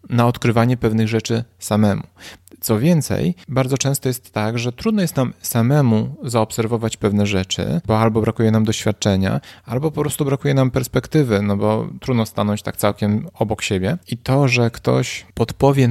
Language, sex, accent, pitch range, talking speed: Polish, male, native, 110-125 Hz, 160 wpm